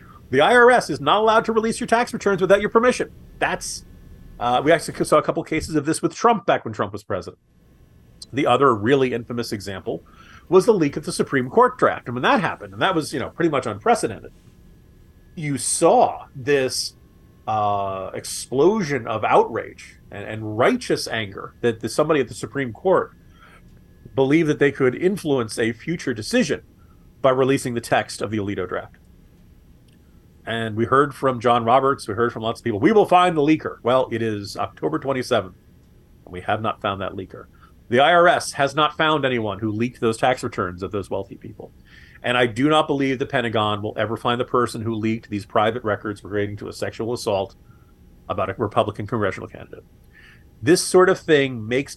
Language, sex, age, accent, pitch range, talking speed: English, male, 40-59, American, 110-155 Hz, 190 wpm